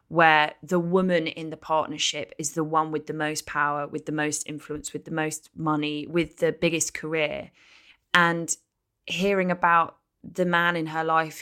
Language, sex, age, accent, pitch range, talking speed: English, female, 20-39, British, 155-185 Hz, 175 wpm